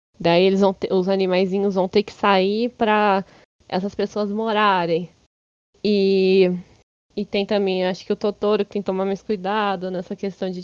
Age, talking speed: 10-29, 170 wpm